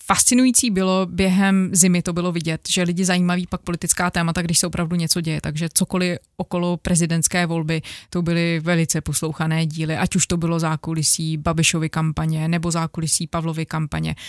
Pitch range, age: 160-175 Hz, 20-39